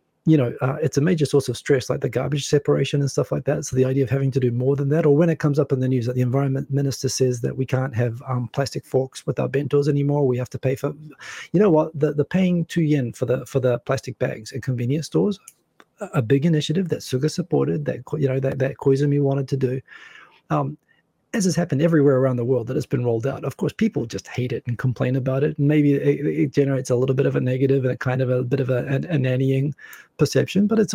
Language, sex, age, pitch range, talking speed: English, male, 30-49, 130-150 Hz, 265 wpm